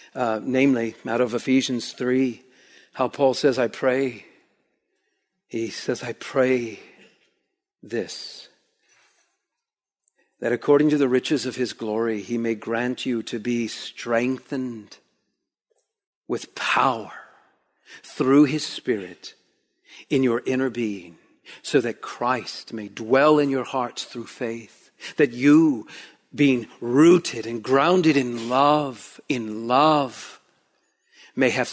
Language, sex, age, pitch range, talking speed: English, male, 50-69, 120-145 Hz, 120 wpm